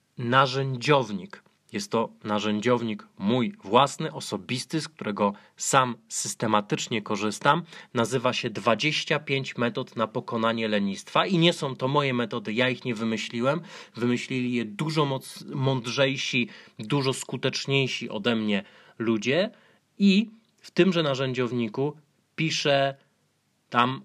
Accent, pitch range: native, 115-145 Hz